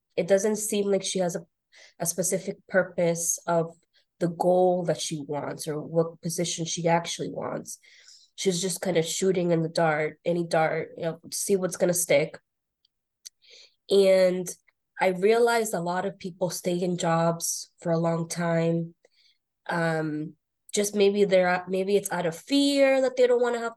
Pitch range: 175-210 Hz